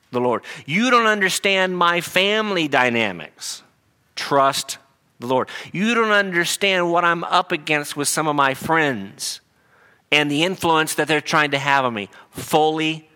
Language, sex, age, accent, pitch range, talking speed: English, male, 50-69, American, 135-160 Hz, 155 wpm